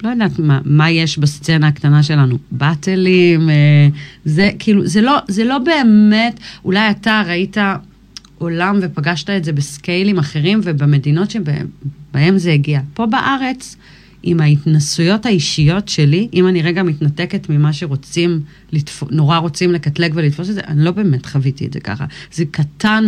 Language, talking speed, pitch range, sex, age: Hebrew, 150 wpm, 145-180 Hz, female, 40-59